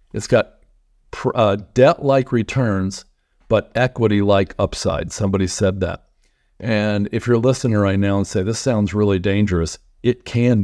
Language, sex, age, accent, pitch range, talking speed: English, male, 50-69, American, 95-110 Hz, 140 wpm